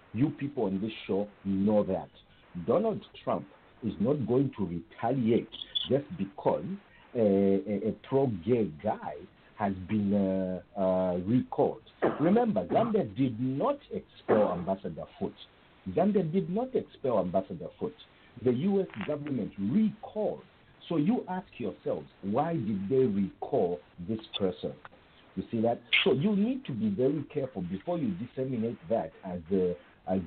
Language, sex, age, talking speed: English, male, 50-69, 140 wpm